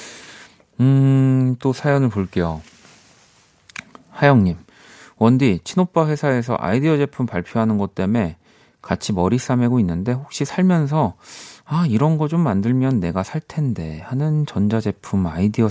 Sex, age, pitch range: male, 40-59, 95-140 Hz